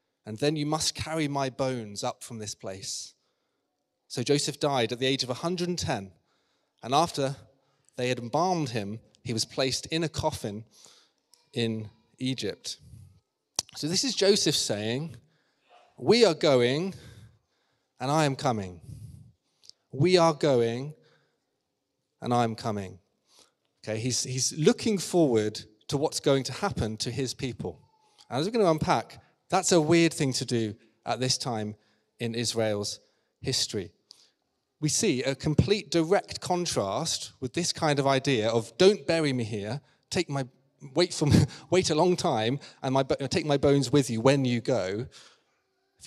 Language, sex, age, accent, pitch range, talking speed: English, male, 30-49, British, 115-155 Hz, 155 wpm